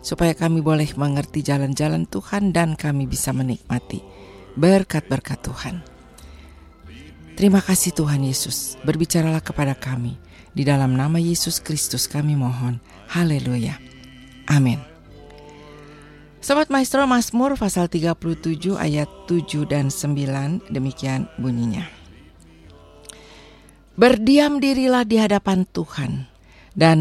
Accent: native